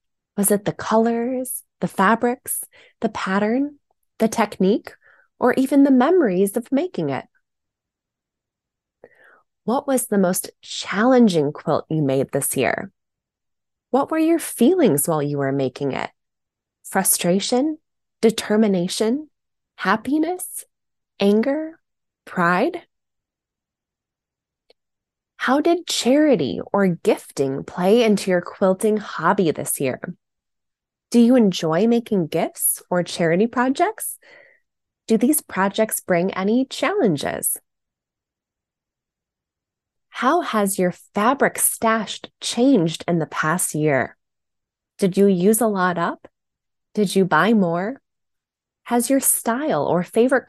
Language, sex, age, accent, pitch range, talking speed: English, female, 20-39, American, 180-260 Hz, 110 wpm